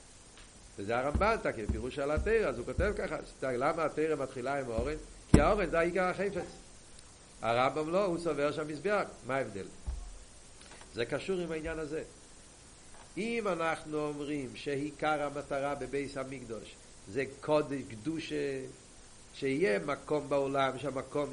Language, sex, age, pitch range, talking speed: Hebrew, male, 50-69, 140-200 Hz, 130 wpm